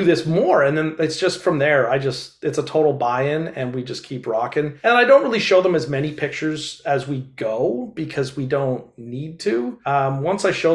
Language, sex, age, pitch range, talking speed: English, male, 40-59, 140-170 Hz, 225 wpm